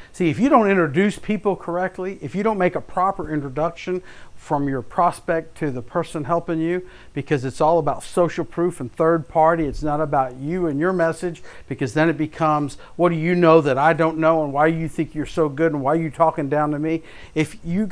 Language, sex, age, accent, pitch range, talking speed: English, male, 50-69, American, 150-190 Hz, 225 wpm